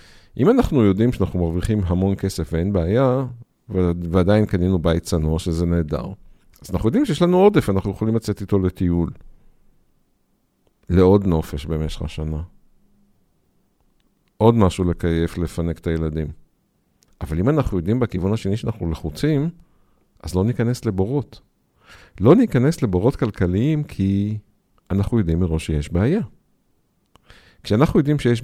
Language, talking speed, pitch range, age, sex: Hebrew, 130 wpm, 85-115 Hz, 50-69, male